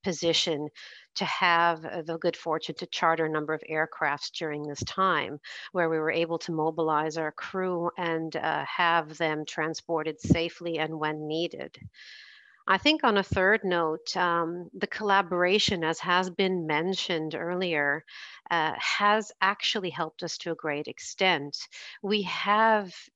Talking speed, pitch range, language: 150 wpm, 160-190 Hz, English